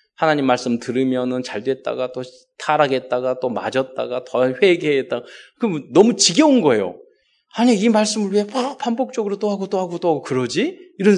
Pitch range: 130-215 Hz